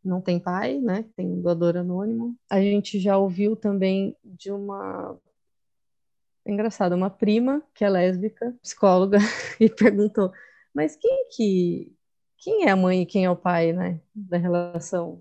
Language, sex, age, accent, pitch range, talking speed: Portuguese, female, 20-39, Brazilian, 185-230 Hz, 160 wpm